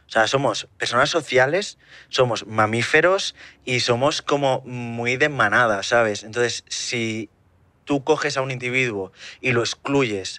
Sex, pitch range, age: male, 105-125 Hz, 20-39